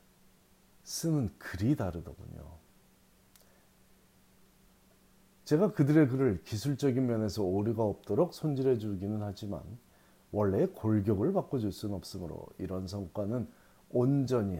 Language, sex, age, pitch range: Korean, male, 40-59, 100-130 Hz